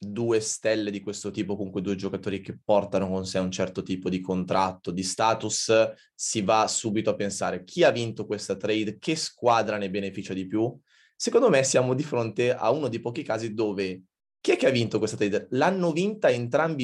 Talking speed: 200 wpm